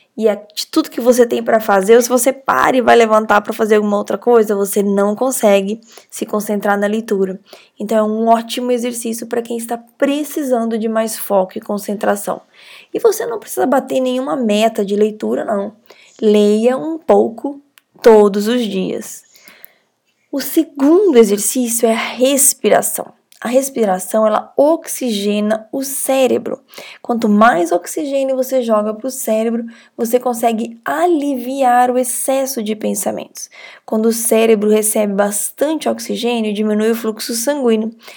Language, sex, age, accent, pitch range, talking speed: Portuguese, female, 10-29, Brazilian, 215-265 Hz, 150 wpm